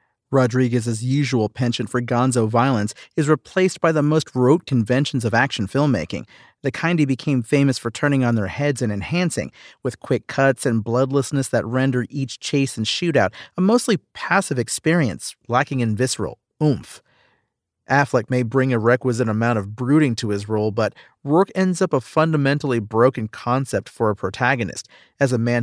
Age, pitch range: 40-59, 115-140 Hz